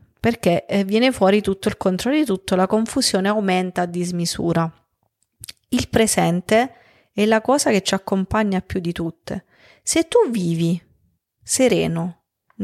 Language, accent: Italian, native